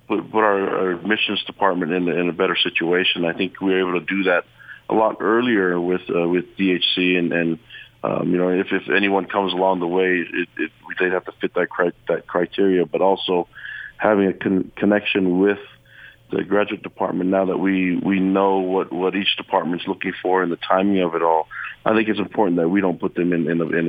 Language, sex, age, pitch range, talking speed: English, male, 40-59, 85-95 Hz, 225 wpm